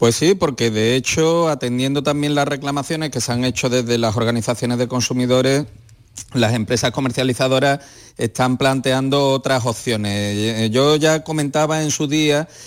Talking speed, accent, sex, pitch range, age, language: 145 wpm, Spanish, male, 125-155 Hz, 40-59, Spanish